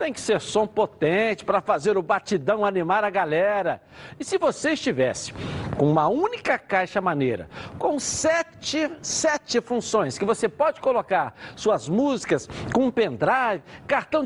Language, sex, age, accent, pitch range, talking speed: Portuguese, male, 60-79, Brazilian, 195-280 Hz, 145 wpm